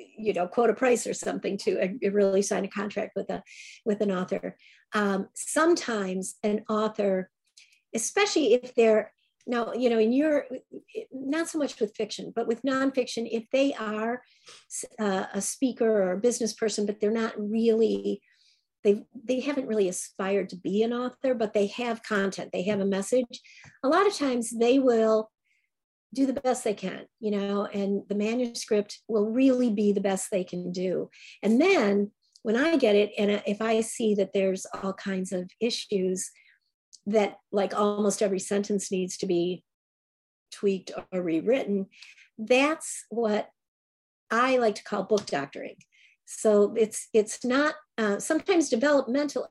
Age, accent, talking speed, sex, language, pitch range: 50-69, American, 165 wpm, female, English, 200-245 Hz